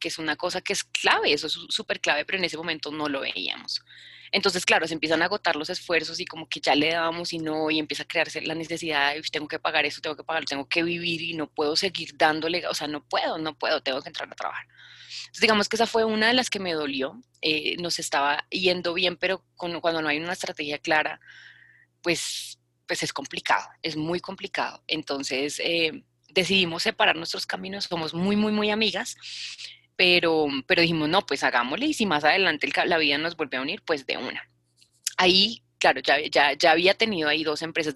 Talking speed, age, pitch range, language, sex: 220 wpm, 20-39, 150-195 Hz, Spanish, female